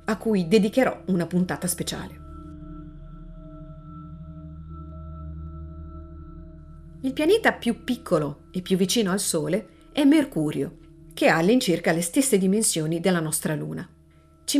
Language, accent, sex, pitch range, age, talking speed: Italian, native, female, 155-220 Hz, 40-59, 110 wpm